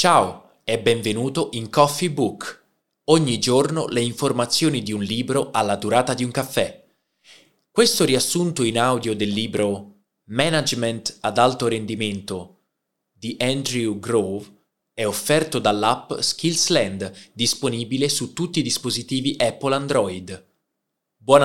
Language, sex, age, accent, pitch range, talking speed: Italian, male, 20-39, native, 110-145 Hz, 120 wpm